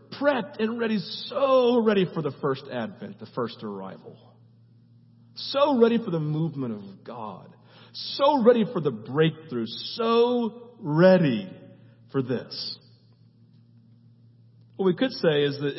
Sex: male